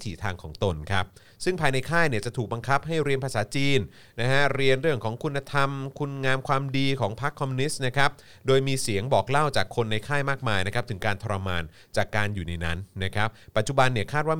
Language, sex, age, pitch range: Thai, male, 30-49, 100-135 Hz